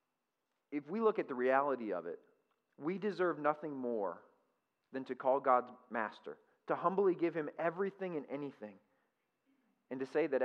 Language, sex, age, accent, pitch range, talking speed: English, male, 40-59, American, 130-185 Hz, 160 wpm